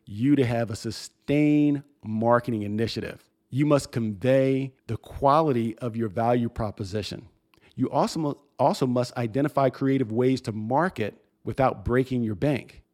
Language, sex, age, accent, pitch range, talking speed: English, male, 40-59, American, 115-140 Hz, 140 wpm